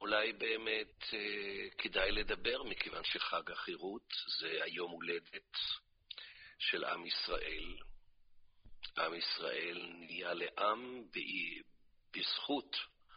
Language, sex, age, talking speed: Hebrew, male, 50-69, 90 wpm